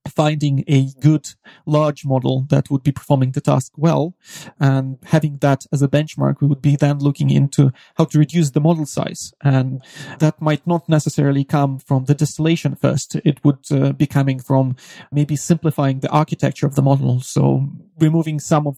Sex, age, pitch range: male, 30-49, 140-155 Hz